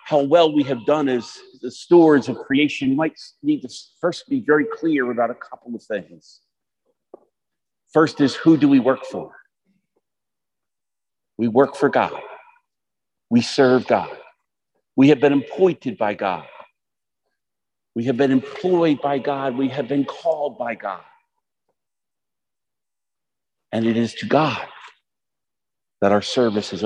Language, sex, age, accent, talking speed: English, male, 50-69, American, 145 wpm